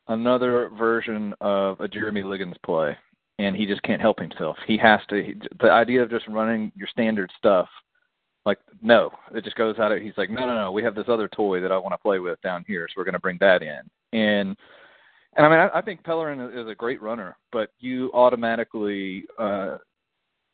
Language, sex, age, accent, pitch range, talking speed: English, male, 40-59, American, 110-150 Hz, 210 wpm